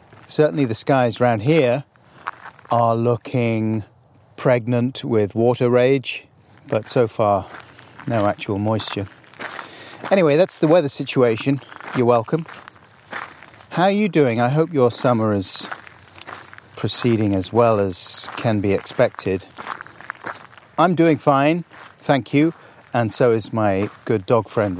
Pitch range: 110-145 Hz